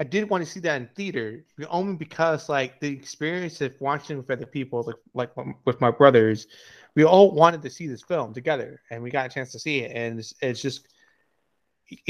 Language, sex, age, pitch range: English, male, 30-49, 125-160 Hz